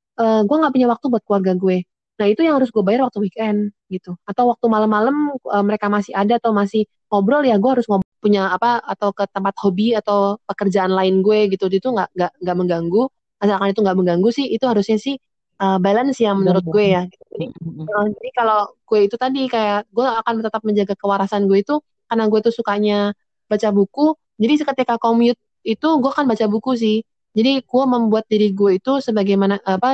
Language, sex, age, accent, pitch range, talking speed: Indonesian, female, 20-39, native, 195-230 Hz, 200 wpm